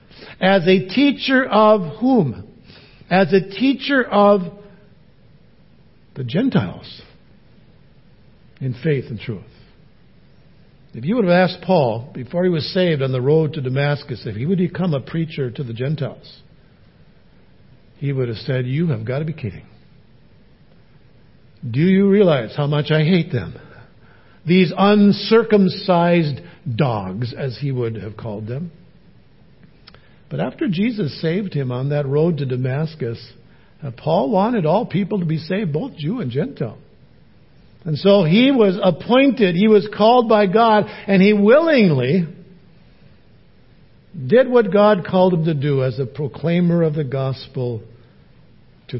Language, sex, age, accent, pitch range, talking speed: English, male, 60-79, American, 125-190 Hz, 140 wpm